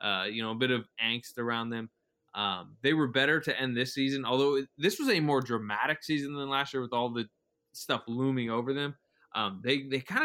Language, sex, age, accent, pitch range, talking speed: English, male, 20-39, American, 115-135 Hz, 225 wpm